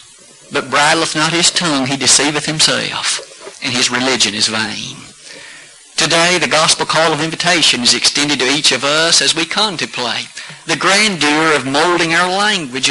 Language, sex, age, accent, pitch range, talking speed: English, male, 50-69, American, 145-180 Hz, 160 wpm